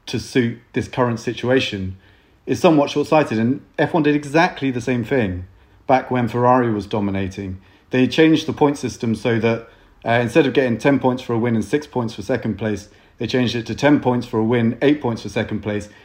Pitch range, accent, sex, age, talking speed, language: 115-140 Hz, British, male, 30-49, 210 wpm, English